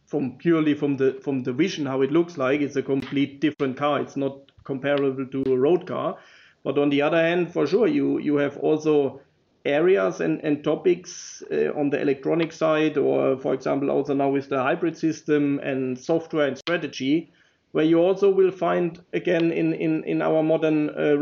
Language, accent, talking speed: English, German, 190 wpm